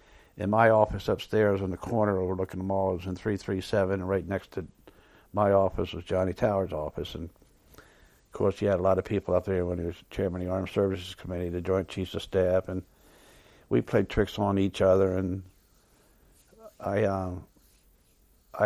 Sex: male